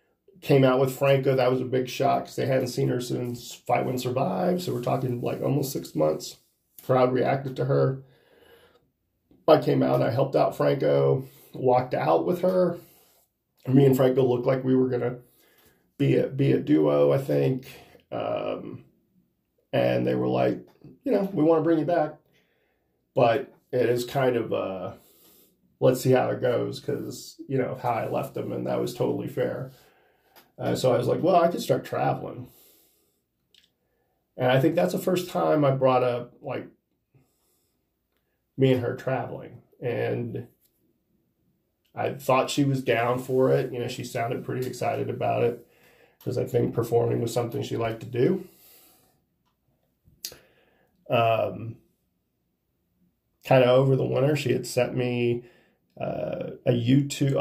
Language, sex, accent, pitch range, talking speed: English, male, American, 115-140 Hz, 155 wpm